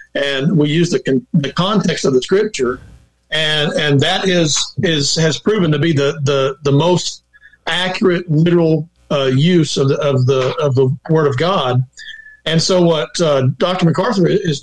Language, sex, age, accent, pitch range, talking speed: English, male, 50-69, American, 140-175 Hz, 170 wpm